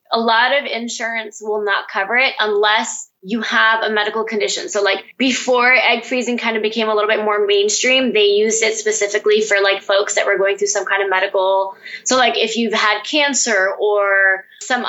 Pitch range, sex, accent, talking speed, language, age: 210-255 Hz, female, American, 200 wpm, English, 10-29